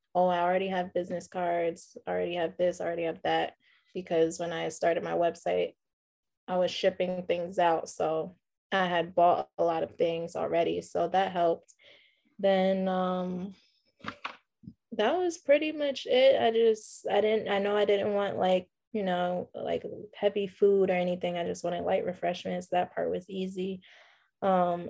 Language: English